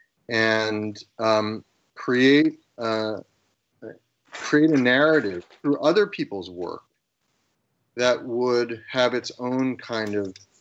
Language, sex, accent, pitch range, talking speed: English, male, American, 110-140 Hz, 100 wpm